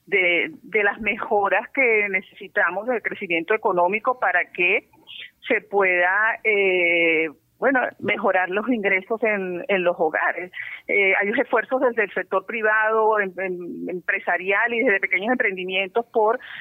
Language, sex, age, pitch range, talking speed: Spanish, female, 40-59, 175-220 Hz, 135 wpm